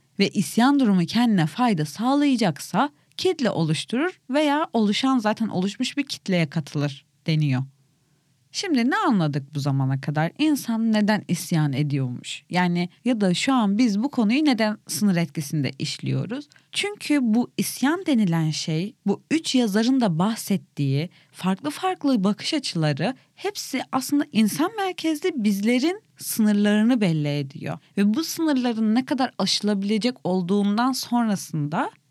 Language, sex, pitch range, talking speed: Turkish, female, 170-255 Hz, 125 wpm